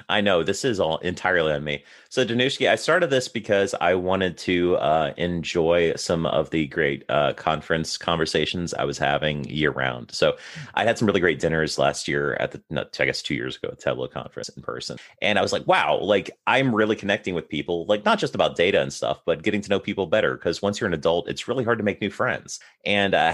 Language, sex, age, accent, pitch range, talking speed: English, male, 30-49, American, 80-100 Hz, 230 wpm